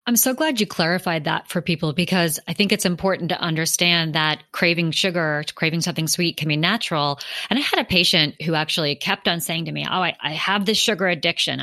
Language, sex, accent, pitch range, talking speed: English, female, American, 155-195 Hz, 220 wpm